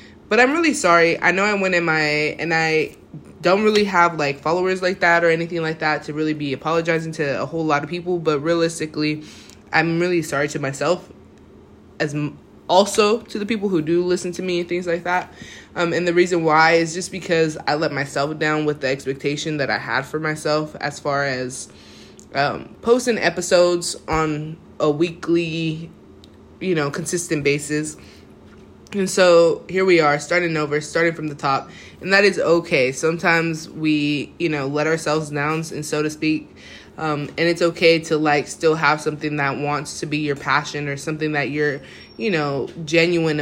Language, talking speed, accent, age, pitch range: English, 190 wpm, American, 20-39, 145-170 Hz